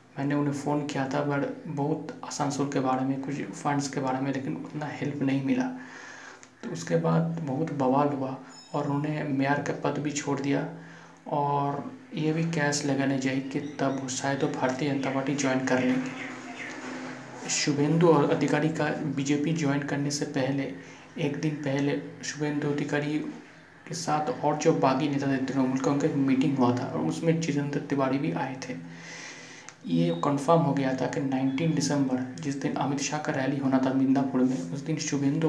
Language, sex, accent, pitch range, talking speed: Hindi, male, native, 135-150 Hz, 180 wpm